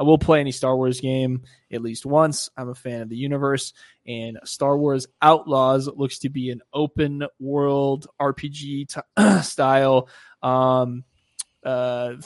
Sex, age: male, 20-39